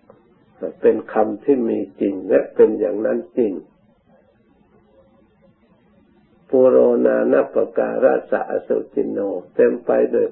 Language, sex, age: Thai, male, 60-79